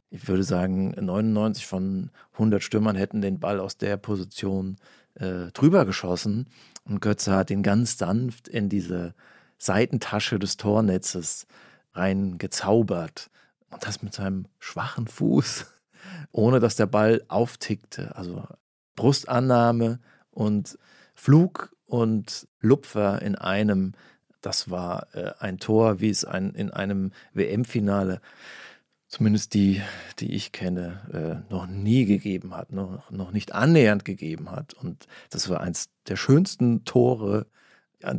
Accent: German